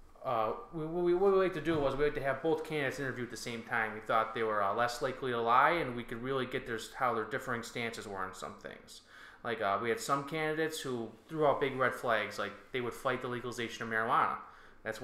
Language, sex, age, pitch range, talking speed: English, male, 20-39, 110-130 Hz, 255 wpm